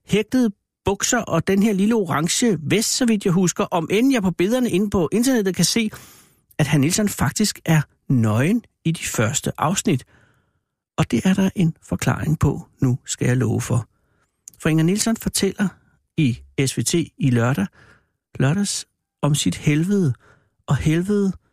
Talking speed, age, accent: 160 wpm, 60-79, native